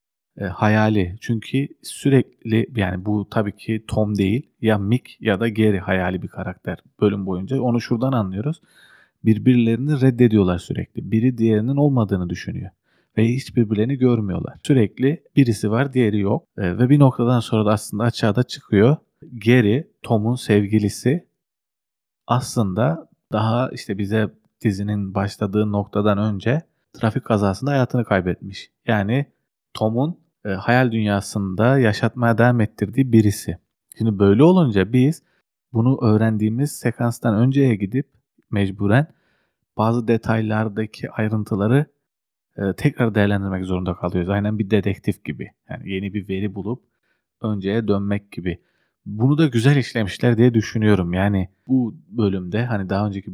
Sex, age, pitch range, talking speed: male, 40-59, 100-125 Hz, 125 wpm